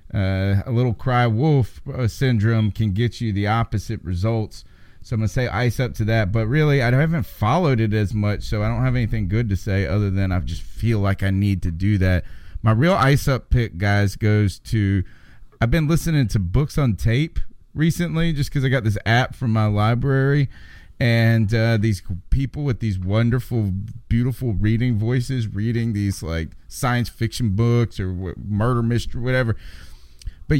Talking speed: 185 wpm